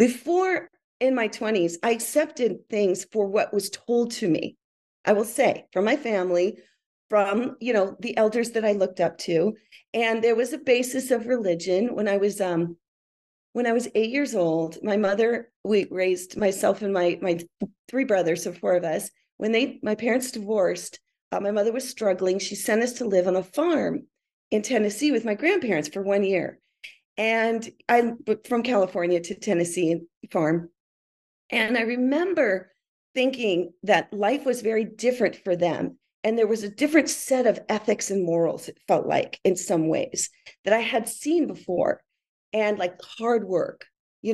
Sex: female